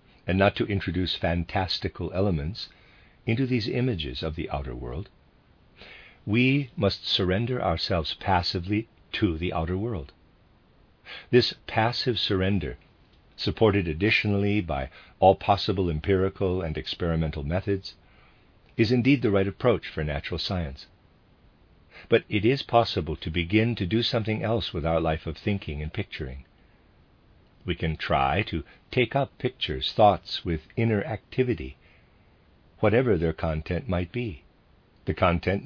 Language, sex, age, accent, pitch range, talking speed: English, male, 50-69, American, 80-110 Hz, 130 wpm